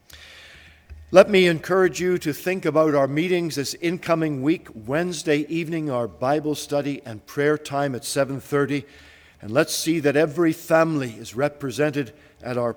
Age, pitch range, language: 50-69, 130-155 Hz, English